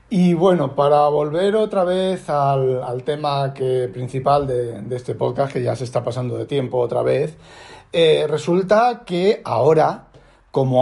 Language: Spanish